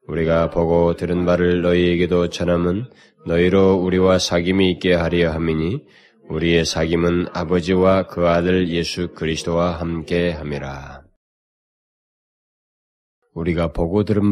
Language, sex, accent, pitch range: Korean, male, native, 75-90 Hz